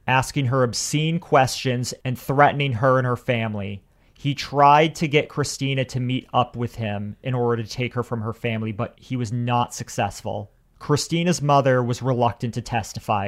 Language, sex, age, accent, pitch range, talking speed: English, male, 30-49, American, 115-145 Hz, 175 wpm